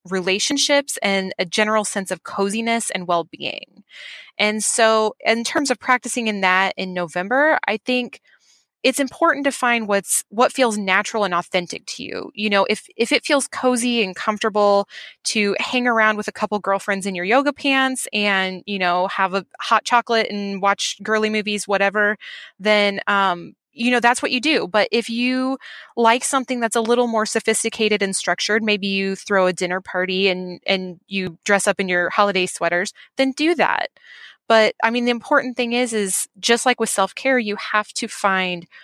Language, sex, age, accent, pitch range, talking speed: English, female, 20-39, American, 195-235 Hz, 185 wpm